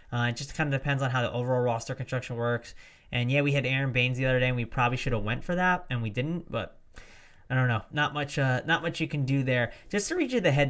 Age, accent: 20-39, American